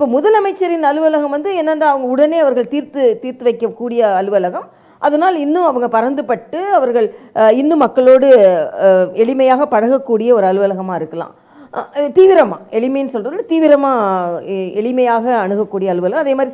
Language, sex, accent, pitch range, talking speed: Tamil, female, native, 215-300 Hz, 60 wpm